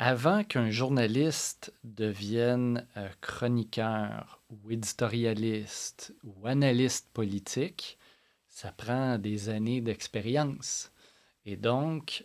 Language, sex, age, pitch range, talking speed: French, male, 40-59, 105-130 Hz, 90 wpm